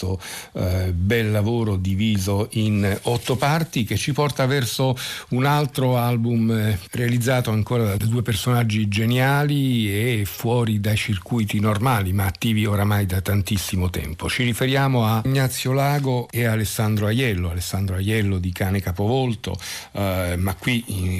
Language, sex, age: Italian, male, 50-69